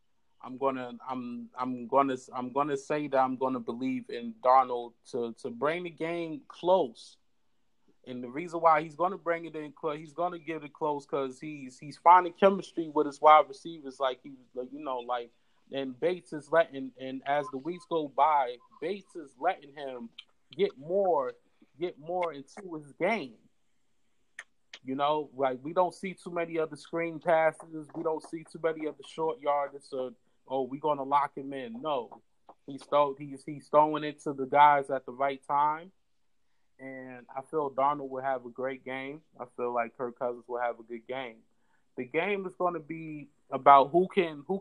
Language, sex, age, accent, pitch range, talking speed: English, male, 20-39, American, 130-165 Hz, 185 wpm